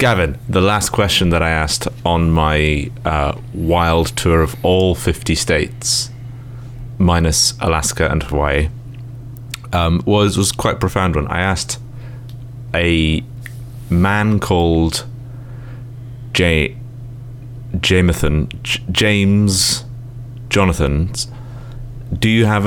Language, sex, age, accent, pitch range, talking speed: English, male, 30-49, British, 80-120 Hz, 105 wpm